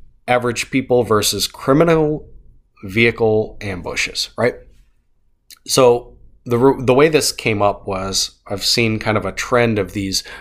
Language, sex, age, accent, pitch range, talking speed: English, male, 30-49, American, 100-115 Hz, 135 wpm